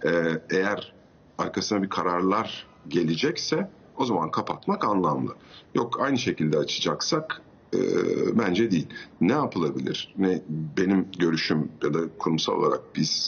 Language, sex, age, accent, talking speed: Turkish, male, 50-69, native, 120 wpm